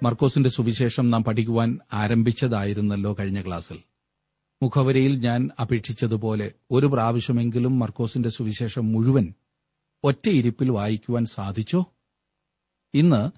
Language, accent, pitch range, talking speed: Malayalam, native, 115-150 Hz, 85 wpm